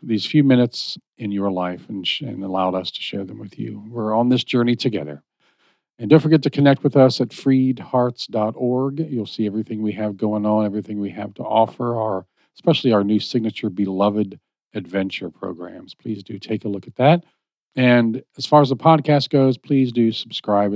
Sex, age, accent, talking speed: male, 40-59, American, 190 wpm